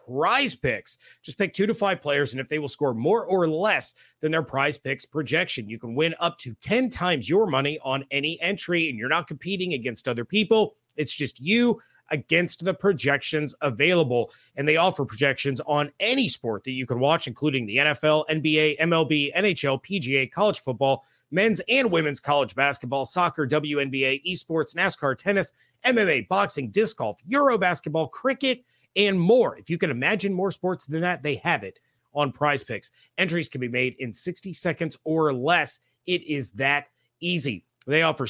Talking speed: 180 wpm